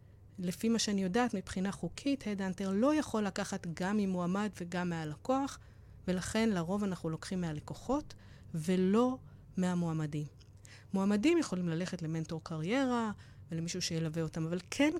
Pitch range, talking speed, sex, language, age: 180-240 Hz, 125 wpm, female, Hebrew, 20-39